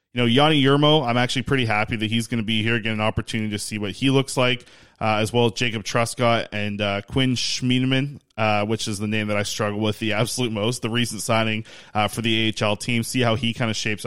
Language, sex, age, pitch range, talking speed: English, male, 20-39, 110-130 Hz, 250 wpm